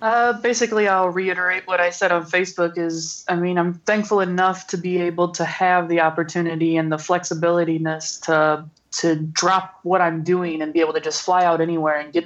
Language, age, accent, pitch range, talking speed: English, 20-39, American, 160-180 Hz, 200 wpm